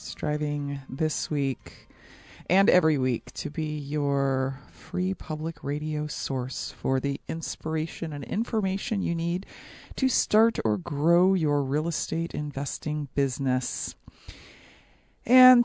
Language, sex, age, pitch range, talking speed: English, female, 40-59, 150-235 Hz, 115 wpm